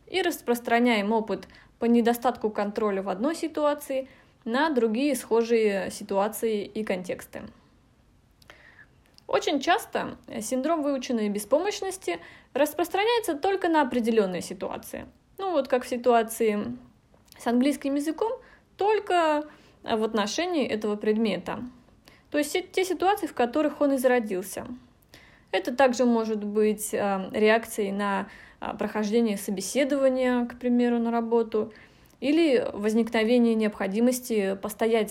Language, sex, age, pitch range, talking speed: Russian, female, 20-39, 220-280 Hz, 105 wpm